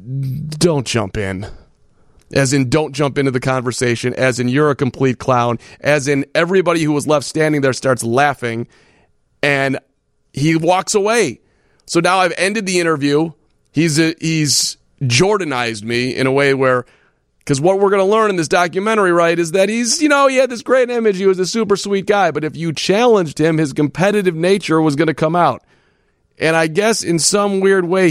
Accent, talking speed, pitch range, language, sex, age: American, 195 wpm, 120-170 Hz, English, male, 40-59